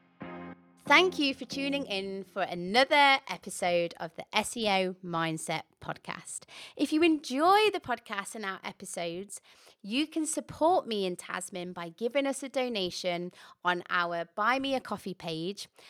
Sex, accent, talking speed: female, British, 145 wpm